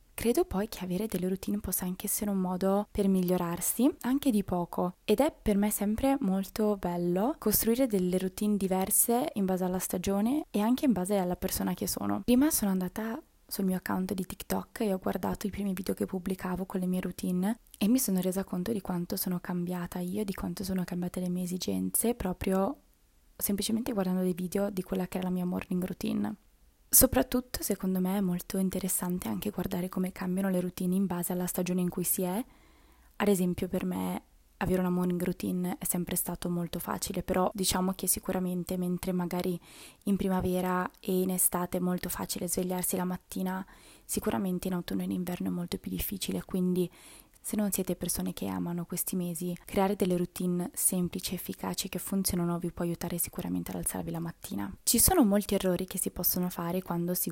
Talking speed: 190 wpm